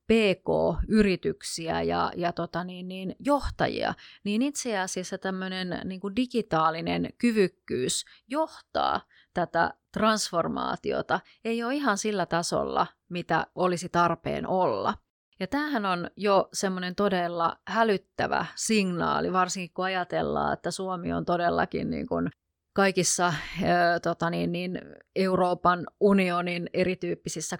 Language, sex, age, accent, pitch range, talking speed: Finnish, female, 30-49, native, 170-205 Hz, 100 wpm